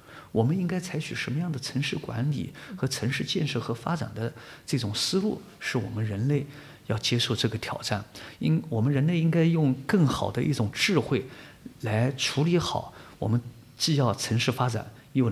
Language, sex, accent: Chinese, male, native